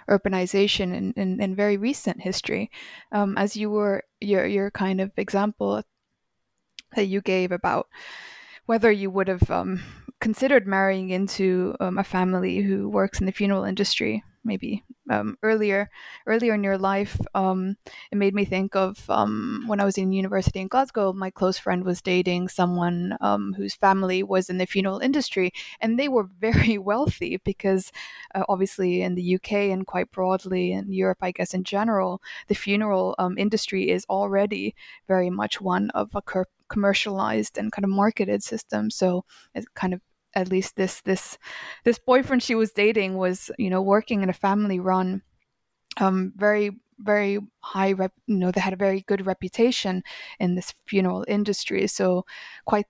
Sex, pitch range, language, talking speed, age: female, 185-210 Hz, English, 170 wpm, 20-39